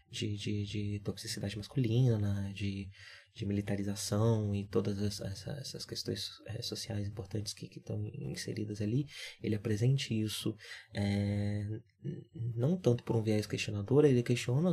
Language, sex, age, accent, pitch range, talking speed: Portuguese, male, 20-39, Brazilian, 100-120 Hz, 120 wpm